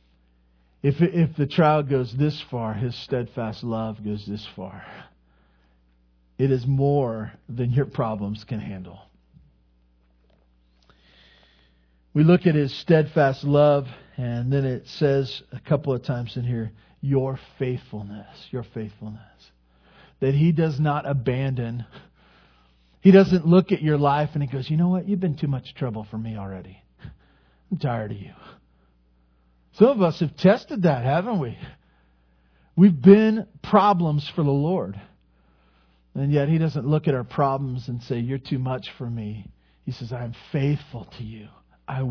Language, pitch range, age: English, 105-155 Hz, 40-59